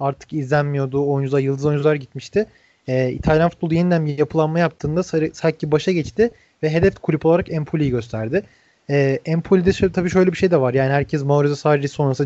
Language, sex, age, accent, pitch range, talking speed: Turkish, male, 30-49, native, 140-180 Hz, 170 wpm